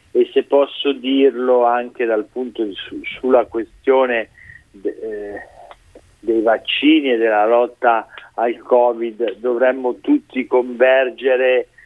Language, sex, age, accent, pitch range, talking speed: Italian, male, 50-69, native, 115-130 Hz, 110 wpm